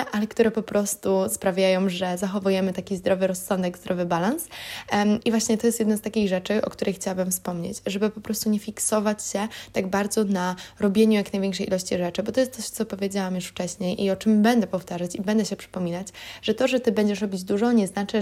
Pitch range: 185-220 Hz